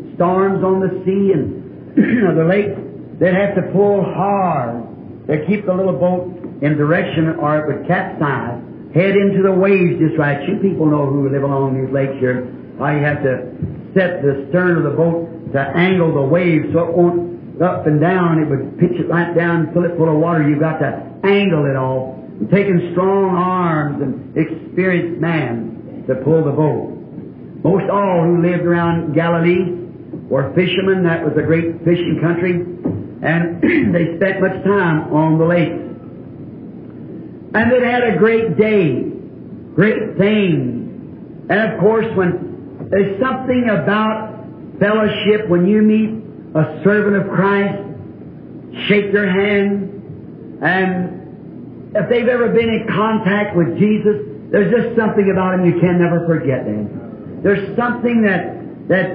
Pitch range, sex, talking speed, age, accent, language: 155-195 Hz, male, 160 wpm, 60-79, American, English